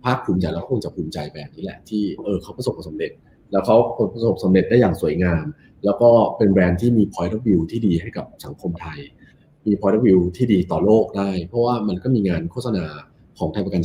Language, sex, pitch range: Thai, male, 85-120 Hz